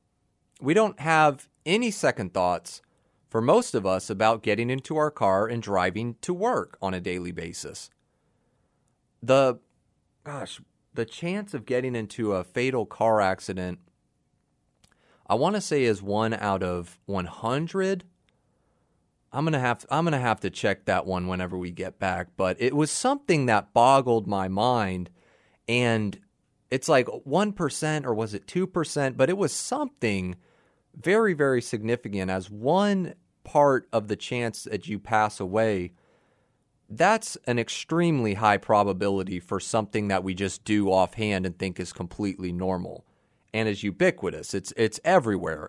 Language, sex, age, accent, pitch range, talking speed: English, male, 30-49, American, 95-135 Hz, 150 wpm